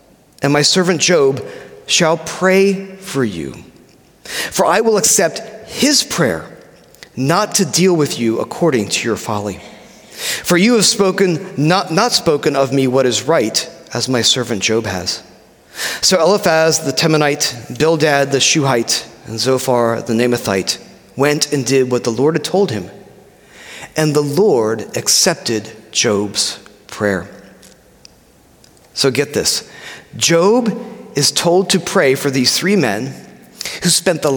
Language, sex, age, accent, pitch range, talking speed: English, male, 30-49, American, 130-190 Hz, 140 wpm